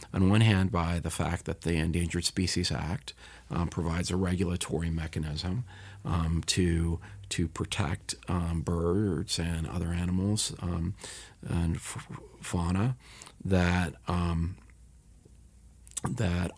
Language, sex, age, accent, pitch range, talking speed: English, male, 40-59, American, 85-95 Hz, 115 wpm